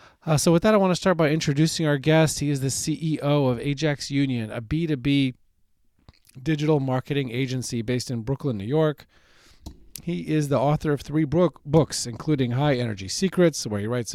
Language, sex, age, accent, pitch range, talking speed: English, male, 40-59, American, 120-160 Hz, 180 wpm